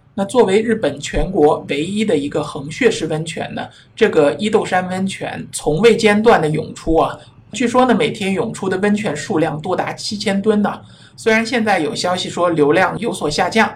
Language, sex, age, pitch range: Chinese, male, 50-69, 155-210 Hz